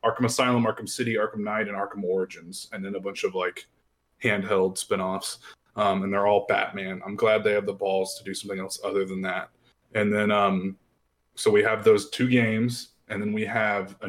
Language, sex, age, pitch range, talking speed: English, male, 20-39, 95-115 Hz, 205 wpm